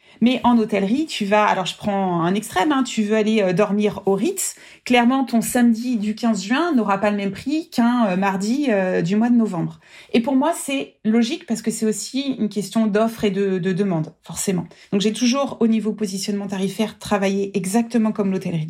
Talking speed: 200 wpm